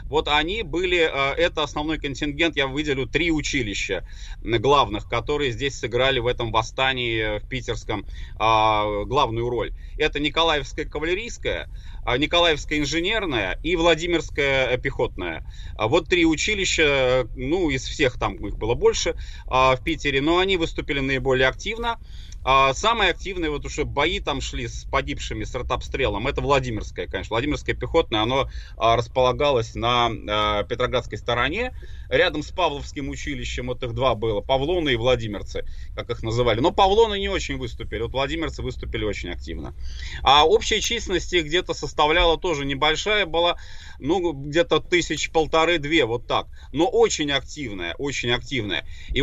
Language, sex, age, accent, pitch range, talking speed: Russian, male, 30-49, native, 120-165 Hz, 135 wpm